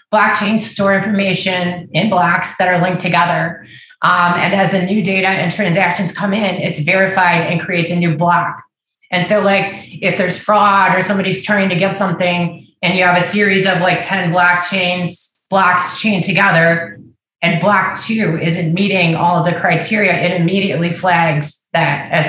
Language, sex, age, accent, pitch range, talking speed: English, female, 30-49, American, 170-190 Hz, 170 wpm